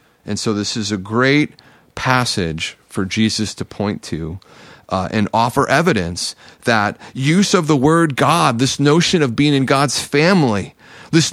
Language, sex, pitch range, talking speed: English, male, 100-140 Hz, 160 wpm